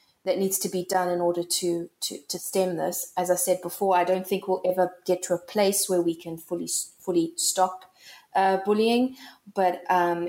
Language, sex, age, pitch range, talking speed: English, female, 20-39, 175-200 Hz, 205 wpm